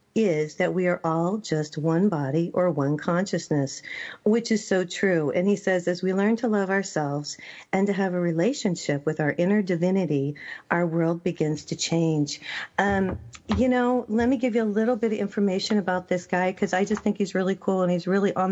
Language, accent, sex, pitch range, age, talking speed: English, American, female, 170-210 Hz, 40-59, 205 wpm